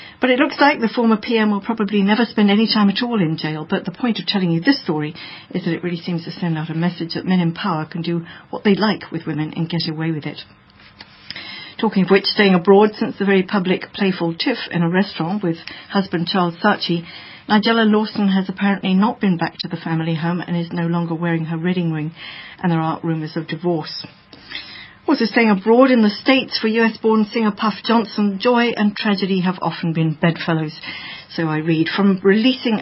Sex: female